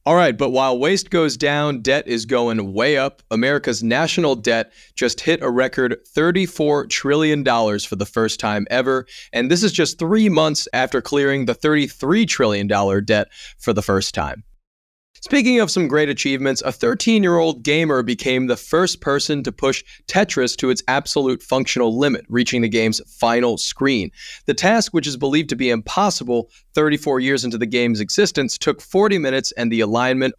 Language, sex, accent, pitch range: English, male, American, 115-155 Hz